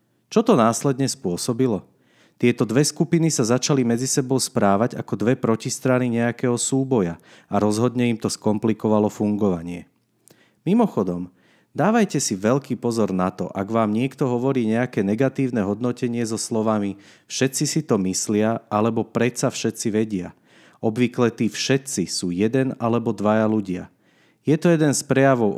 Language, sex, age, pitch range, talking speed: Slovak, male, 40-59, 105-130 Hz, 140 wpm